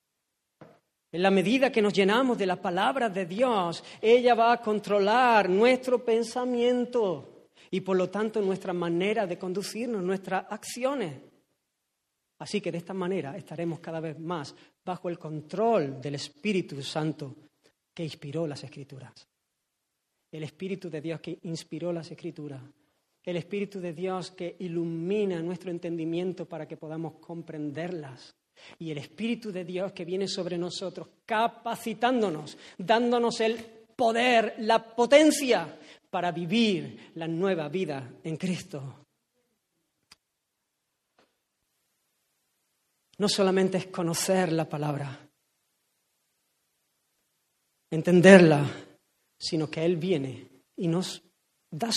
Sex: female